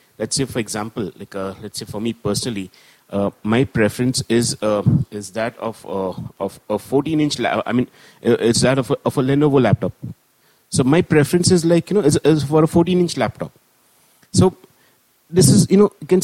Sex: male